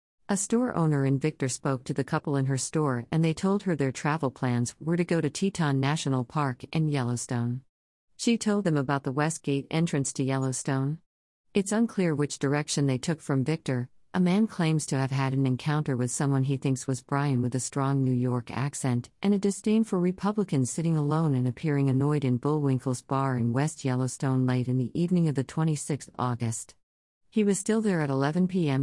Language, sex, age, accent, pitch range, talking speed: English, female, 50-69, American, 130-155 Hz, 200 wpm